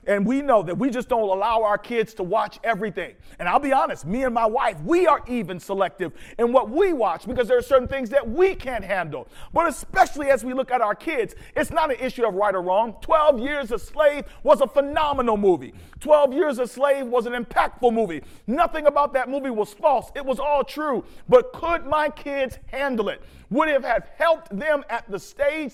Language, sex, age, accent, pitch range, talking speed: English, male, 40-59, American, 230-300 Hz, 220 wpm